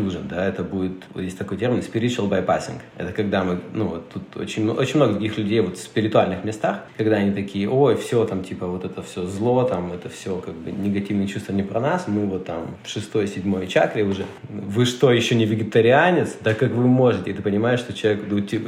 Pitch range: 95-115 Hz